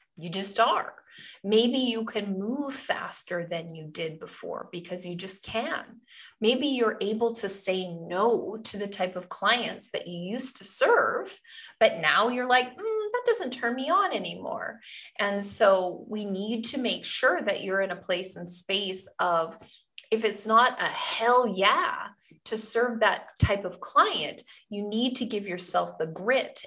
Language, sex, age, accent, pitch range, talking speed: English, female, 30-49, American, 180-235 Hz, 175 wpm